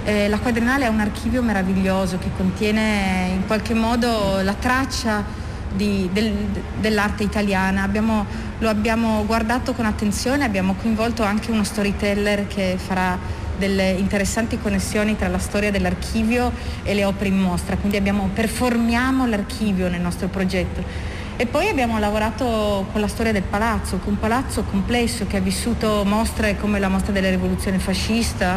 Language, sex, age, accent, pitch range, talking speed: Italian, female, 30-49, native, 200-235 Hz, 145 wpm